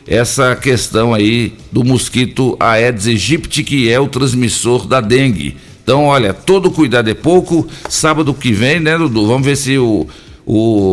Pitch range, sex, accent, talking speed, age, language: 115-140 Hz, male, Brazilian, 160 wpm, 60-79, Portuguese